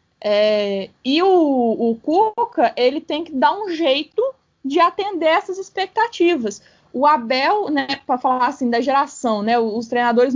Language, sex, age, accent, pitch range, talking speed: Portuguese, female, 20-39, Brazilian, 245-310 Hz, 145 wpm